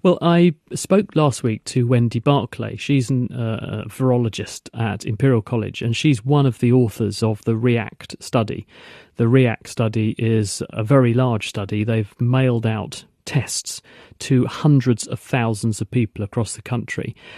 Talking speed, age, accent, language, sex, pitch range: 160 wpm, 40-59, British, English, male, 110-130 Hz